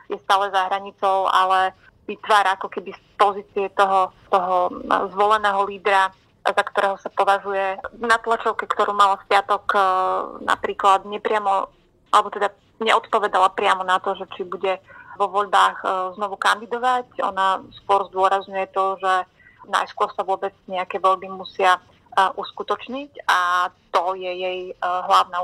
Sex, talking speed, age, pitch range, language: female, 130 wpm, 30-49, 190-205 Hz, Slovak